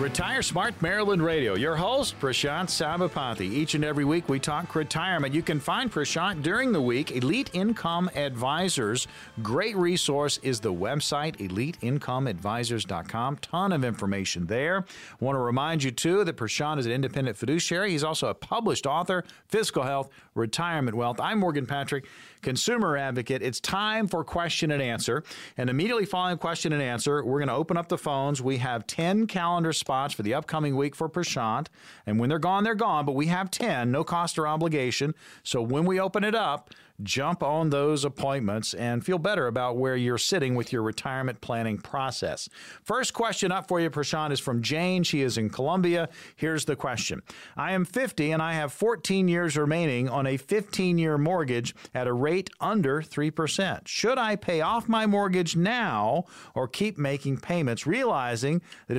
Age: 40-59